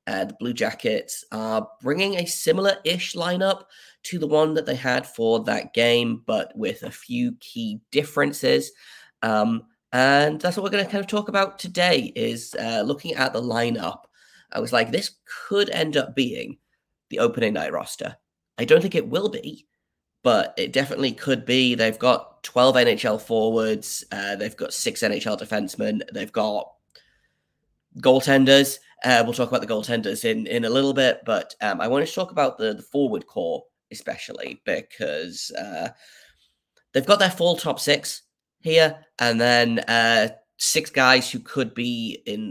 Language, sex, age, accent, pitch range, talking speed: English, male, 20-39, British, 115-180 Hz, 170 wpm